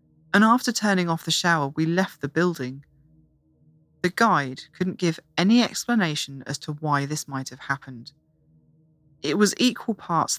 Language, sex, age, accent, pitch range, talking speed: English, female, 30-49, British, 145-175 Hz, 155 wpm